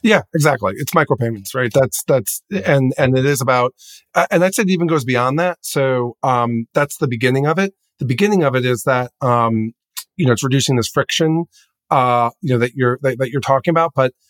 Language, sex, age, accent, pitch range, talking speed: English, male, 40-59, American, 125-160 Hz, 210 wpm